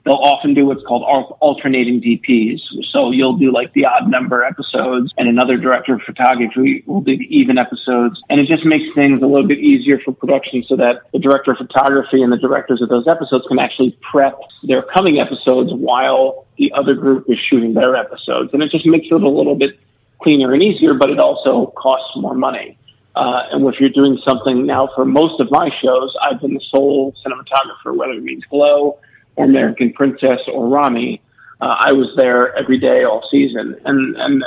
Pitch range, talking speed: 130-145 Hz, 200 wpm